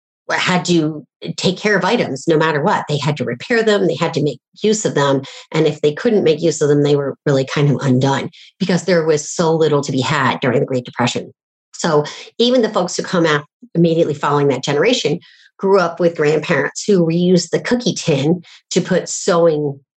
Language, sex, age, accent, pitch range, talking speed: English, female, 40-59, American, 150-185 Hz, 210 wpm